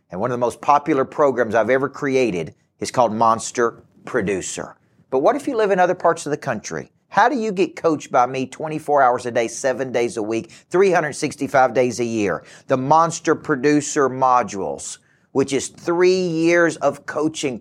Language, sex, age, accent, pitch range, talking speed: English, male, 40-59, American, 120-165 Hz, 185 wpm